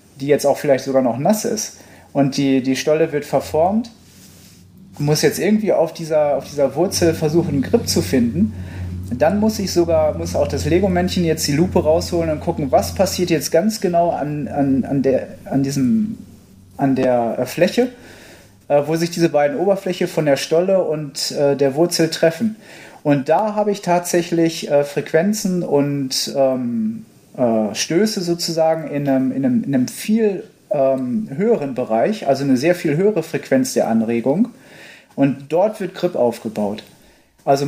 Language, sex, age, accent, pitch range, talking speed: German, male, 30-49, German, 140-180 Hz, 165 wpm